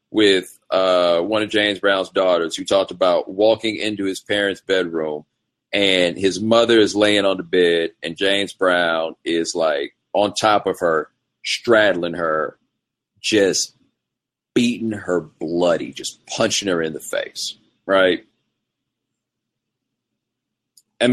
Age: 40-59